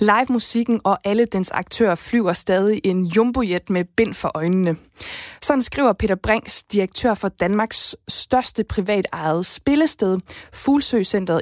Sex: female